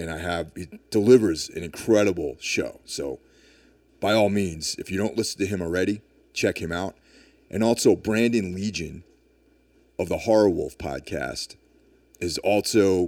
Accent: American